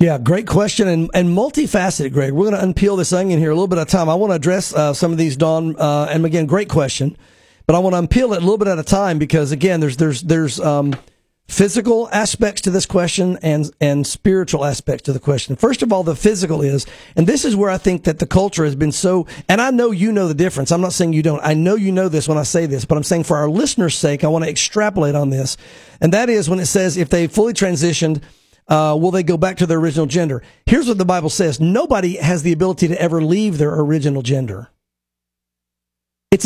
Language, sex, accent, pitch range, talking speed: English, male, American, 150-195 Hz, 250 wpm